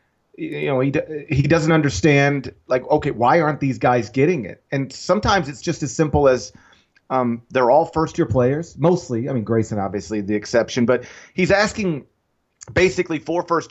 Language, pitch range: English, 120-160 Hz